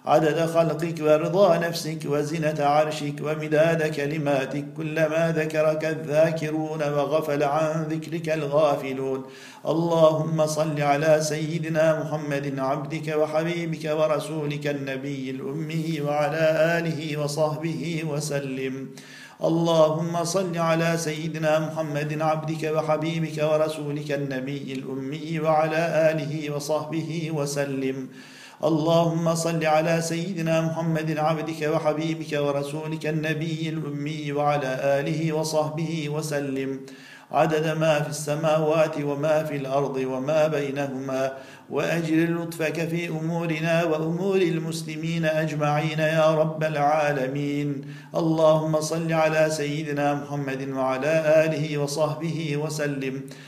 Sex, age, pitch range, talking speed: male, 50-69, 145-160 Hz, 95 wpm